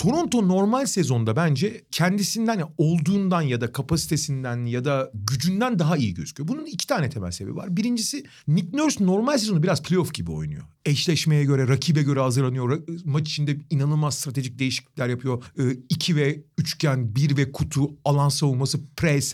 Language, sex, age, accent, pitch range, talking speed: Turkish, male, 40-59, native, 135-185 Hz, 160 wpm